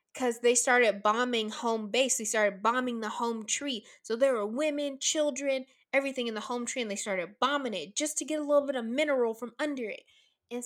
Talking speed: 220 wpm